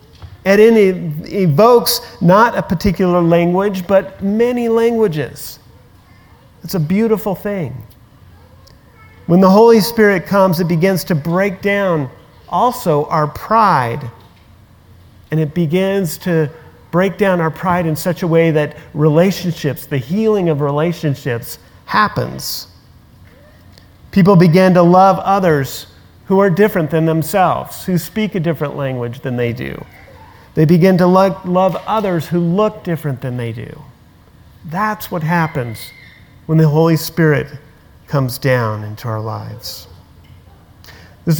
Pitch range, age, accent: 125-185 Hz, 40-59, American